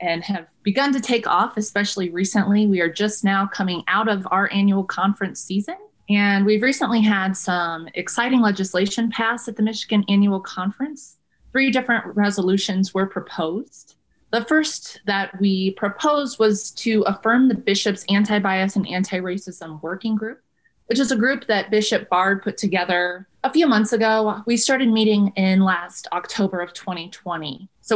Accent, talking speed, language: American, 160 wpm, English